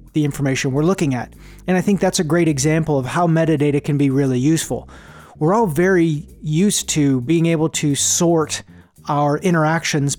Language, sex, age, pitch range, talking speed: English, male, 30-49, 145-175 Hz, 175 wpm